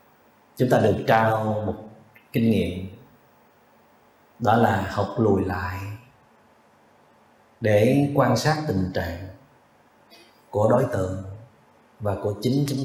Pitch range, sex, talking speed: 105-135 Hz, male, 110 wpm